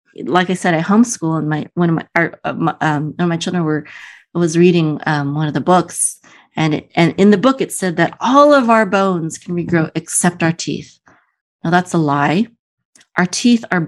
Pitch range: 155-185 Hz